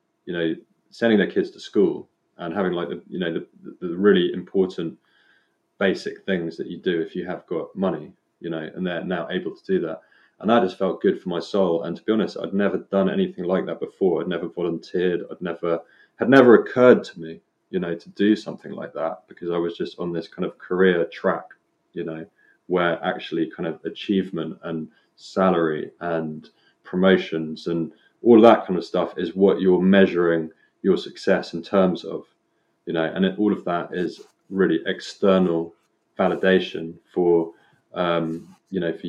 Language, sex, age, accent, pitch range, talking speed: English, male, 30-49, British, 80-95 Hz, 190 wpm